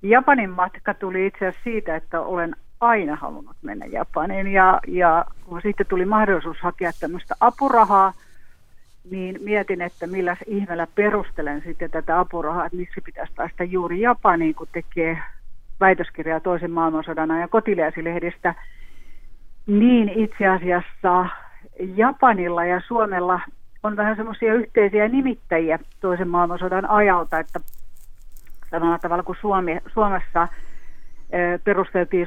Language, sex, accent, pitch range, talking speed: Finnish, female, native, 165-195 Hz, 115 wpm